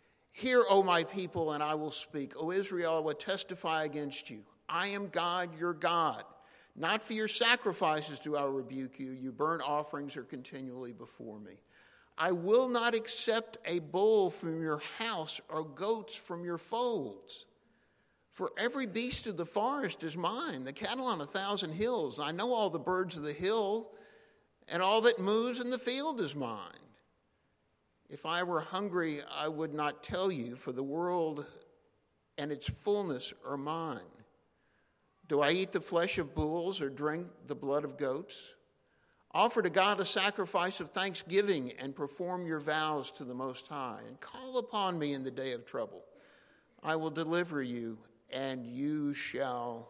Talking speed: 170 wpm